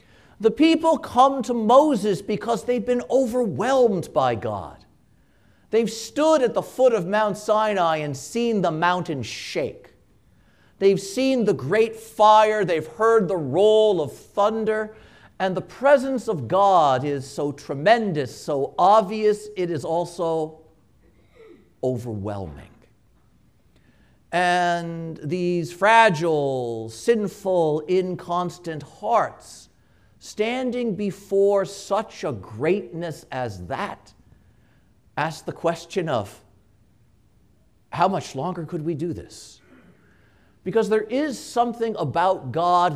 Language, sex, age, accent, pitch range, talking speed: English, male, 50-69, American, 130-215 Hz, 110 wpm